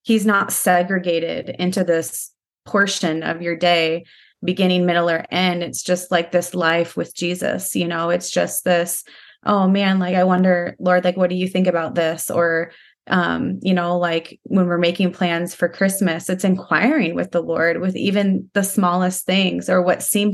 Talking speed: 185 wpm